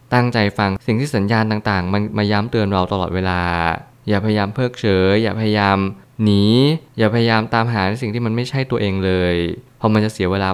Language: Thai